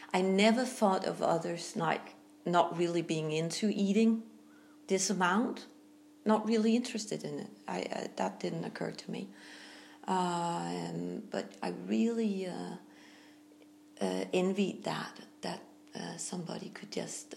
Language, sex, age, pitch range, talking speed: English, female, 40-59, 170-225 Hz, 130 wpm